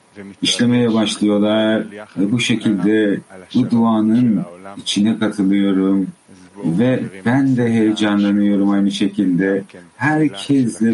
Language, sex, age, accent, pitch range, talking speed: English, male, 50-69, Turkish, 100-125 Hz, 90 wpm